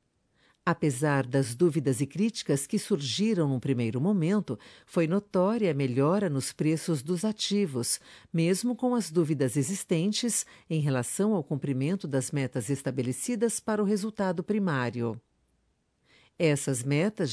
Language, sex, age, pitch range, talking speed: Portuguese, female, 50-69, 140-205 Hz, 125 wpm